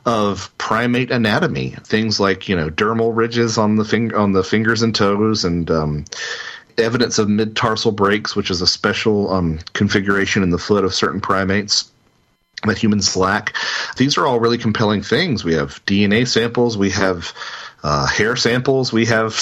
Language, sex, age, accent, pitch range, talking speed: English, male, 40-59, American, 95-120 Hz, 170 wpm